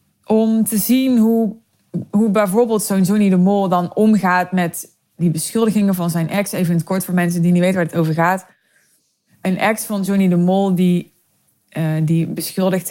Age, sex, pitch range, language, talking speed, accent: 20-39, female, 165-190 Hz, Dutch, 180 wpm, Dutch